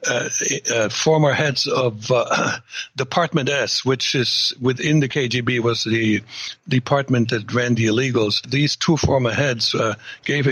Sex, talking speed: male, 150 wpm